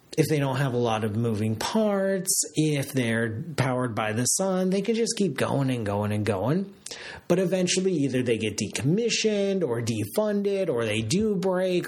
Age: 30-49